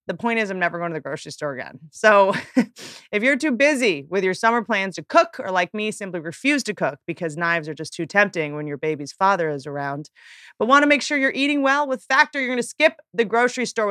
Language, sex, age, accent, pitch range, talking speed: English, female, 30-49, American, 170-250 Hz, 250 wpm